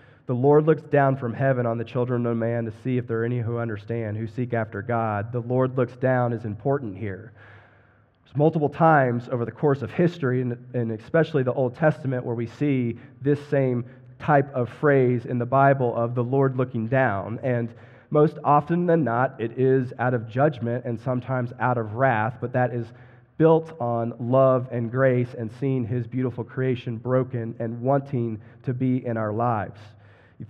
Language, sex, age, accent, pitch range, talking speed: English, male, 30-49, American, 115-130 Hz, 190 wpm